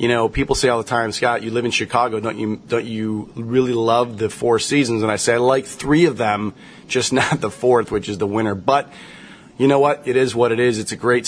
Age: 30-49